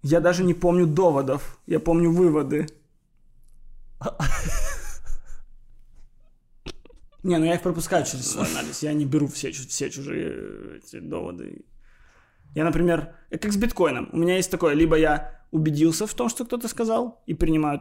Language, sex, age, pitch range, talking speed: Ukrainian, male, 20-39, 145-185 Hz, 140 wpm